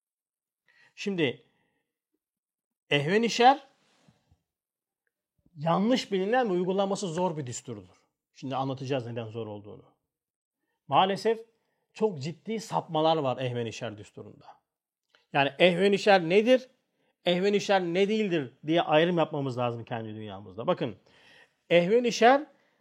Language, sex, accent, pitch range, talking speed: Turkish, male, native, 170-245 Hz, 90 wpm